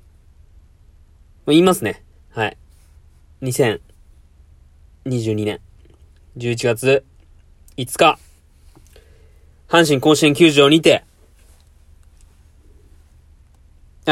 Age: 20-39